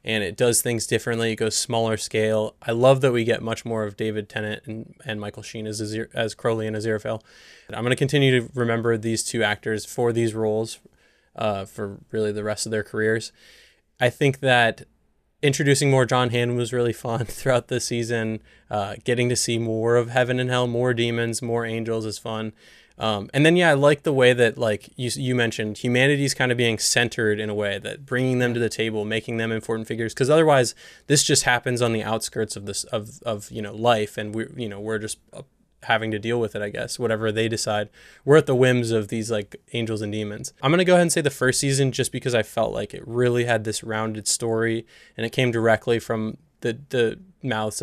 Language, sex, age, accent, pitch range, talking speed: English, male, 20-39, American, 110-125 Hz, 225 wpm